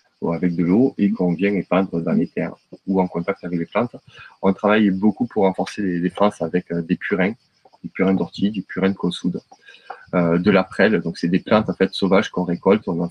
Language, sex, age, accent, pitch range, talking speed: French, male, 20-39, French, 90-100 Hz, 225 wpm